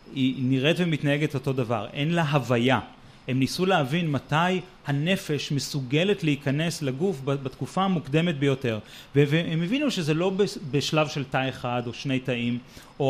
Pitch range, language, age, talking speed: 130-170 Hz, Hebrew, 30-49, 140 wpm